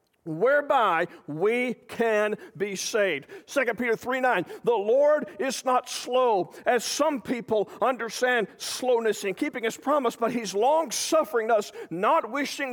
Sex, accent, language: male, American, English